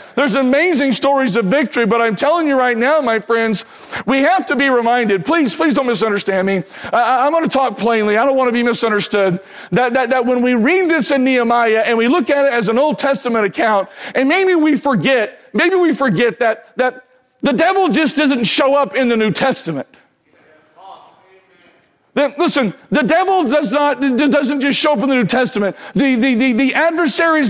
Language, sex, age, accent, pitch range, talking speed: English, male, 50-69, American, 230-290 Hz, 200 wpm